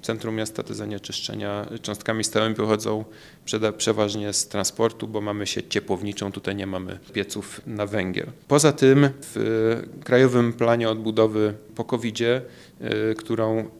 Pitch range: 105-120 Hz